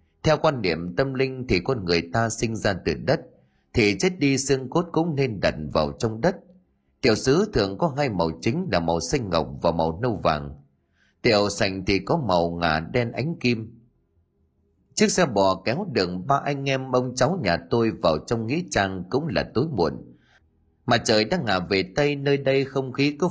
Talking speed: 205 wpm